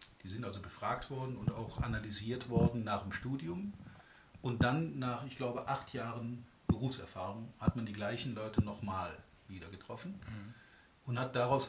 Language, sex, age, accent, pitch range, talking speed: German, male, 50-69, German, 105-135 Hz, 160 wpm